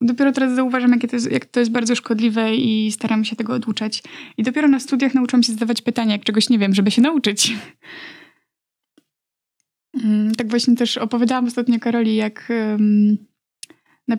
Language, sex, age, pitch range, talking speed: Polish, female, 20-39, 210-245 Hz, 155 wpm